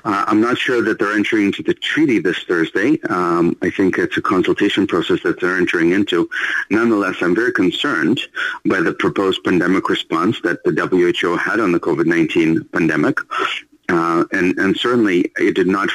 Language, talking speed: English, 175 wpm